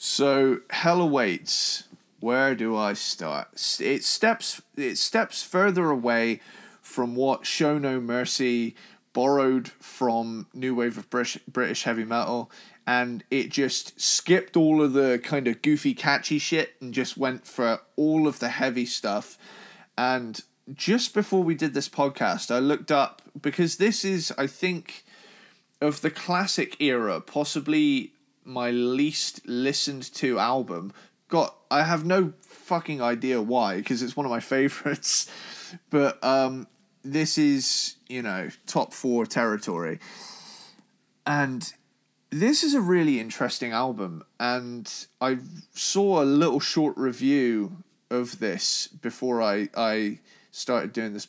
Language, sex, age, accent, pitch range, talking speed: English, male, 20-39, British, 120-155 Hz, 135 wpm